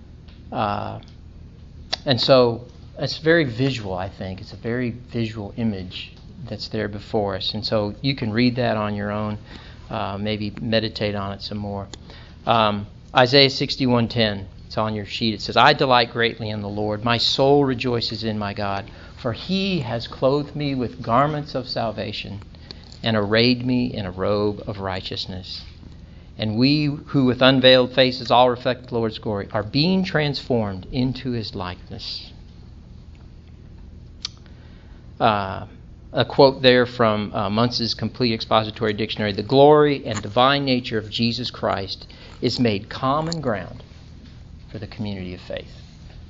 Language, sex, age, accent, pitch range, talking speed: English, male, 40-59, American, 100-125 Hz, 150 wpm